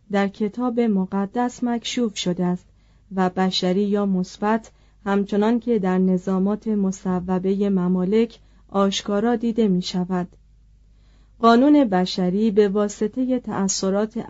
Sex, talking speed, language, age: female, 105 wpm, Persian, 40-59